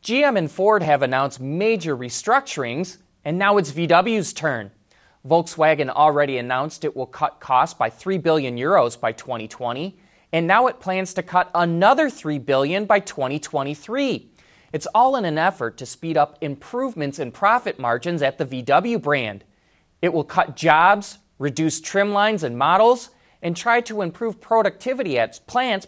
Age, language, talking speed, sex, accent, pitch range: 30-49, English, 160 wpm, male, American, 140-210 Hz